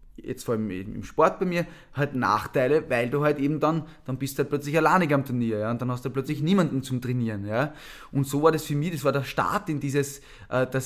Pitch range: 125-150 Hz